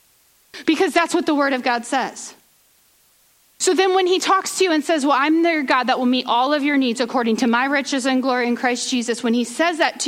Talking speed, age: 250 wpm, 40-59